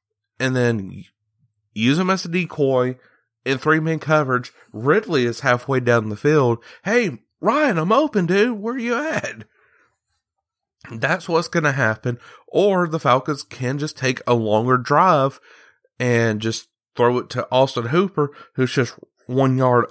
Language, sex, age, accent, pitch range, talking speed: English, male, 30-49, American, 115-155 Hz, 150 wpm